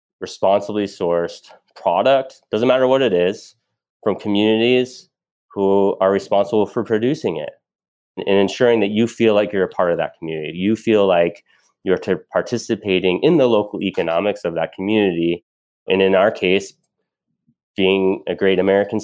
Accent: American